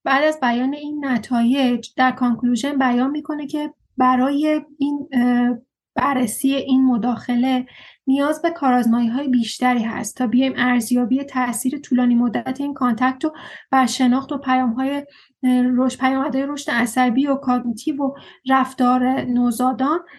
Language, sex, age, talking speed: Persian, female, 30-49, 120 wpm